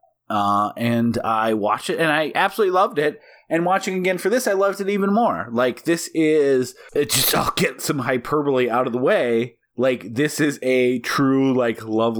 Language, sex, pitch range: English, male, 110-145 Hz